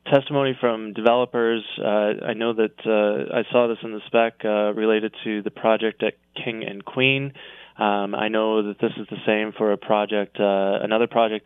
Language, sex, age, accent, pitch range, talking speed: English, male, 20-39, American, 105-120 Hz, 195 wpm